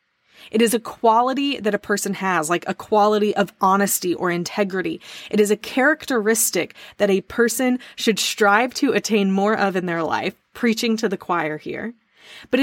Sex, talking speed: female, 175 wpm